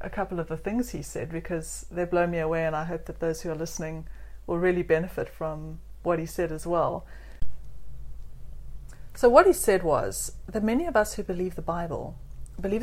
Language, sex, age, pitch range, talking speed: English, female, 40-59, 160-200 Hz, 200 wpm